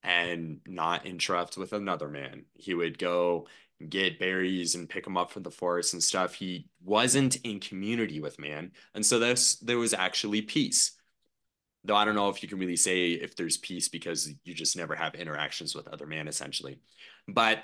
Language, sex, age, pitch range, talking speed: English, male, 20-39, 85-110 Hz, 190 wpm